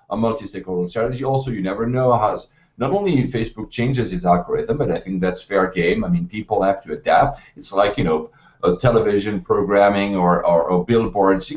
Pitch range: 100-140 Hz